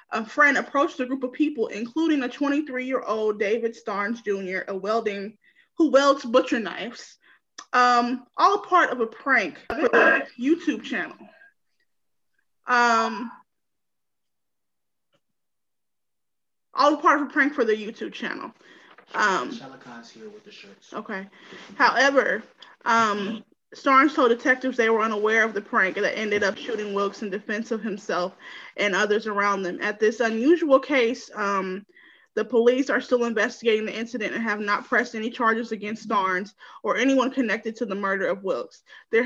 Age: 20-39